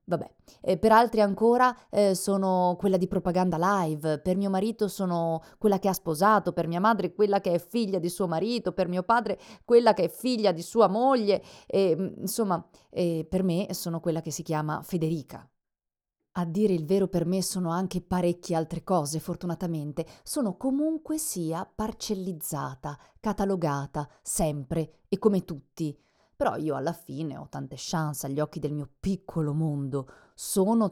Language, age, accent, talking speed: Italian, 30-49, native, 165 wpm